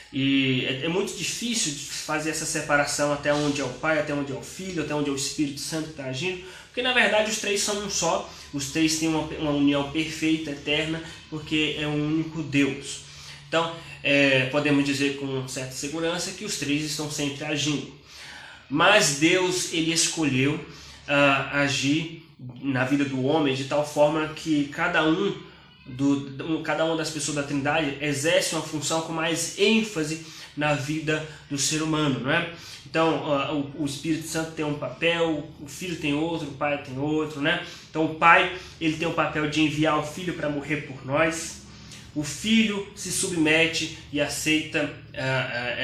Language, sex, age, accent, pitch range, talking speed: Portuguese, male, 20-39, Brazilian, 140-160 Hz, 180 wpm